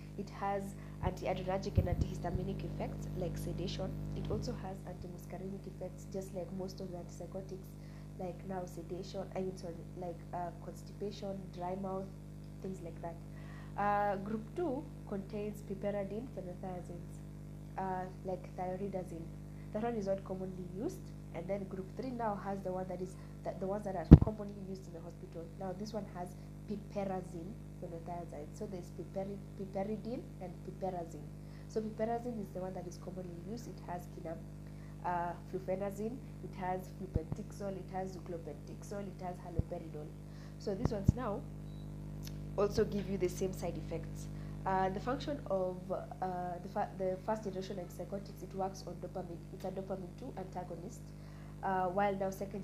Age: 20-39